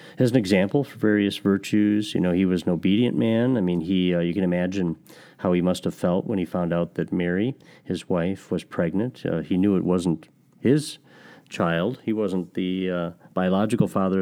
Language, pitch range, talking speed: English, 90-105 Hz, 205 wpm